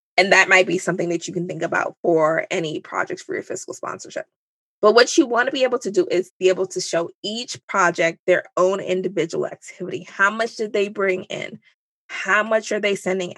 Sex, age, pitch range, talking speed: female, 20-39, 170-210 Hz, 215 wpm